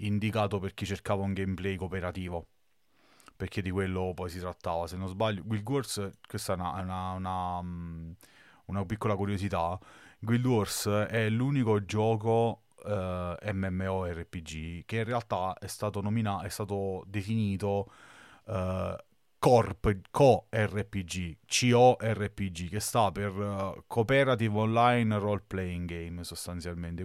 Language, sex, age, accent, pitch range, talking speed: Italian, male, 30-49, native, 85-105 Hz, 125 wpm